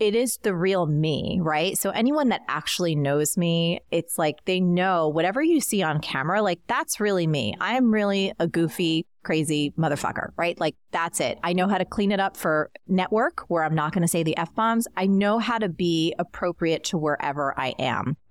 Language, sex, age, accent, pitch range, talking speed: English, female, 30-49, American, 155-210 Hz, 205 wpm